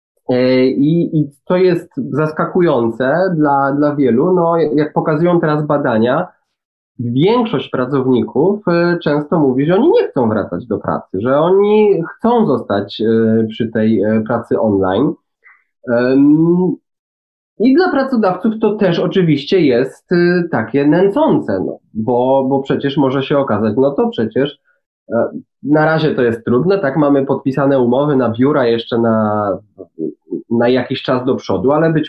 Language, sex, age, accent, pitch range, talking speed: Polish, male, 20-39, native, 125-175 Hz, 135 wpm